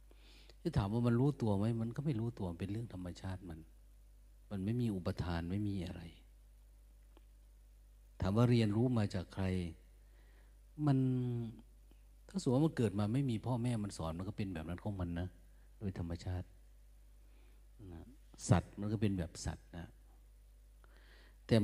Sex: male